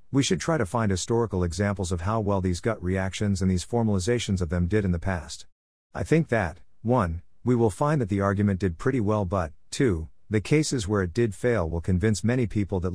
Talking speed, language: 225 wpm, English